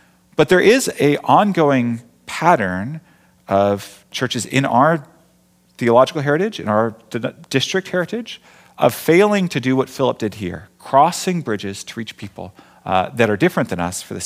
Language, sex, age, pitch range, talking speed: English, male, 40-59, 100-150 Hz, 155 wpm